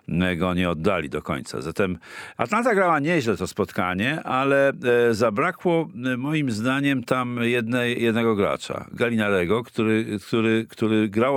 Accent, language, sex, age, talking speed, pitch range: native, Polish, male, 50-69, 130 wpm, 90-125 Hz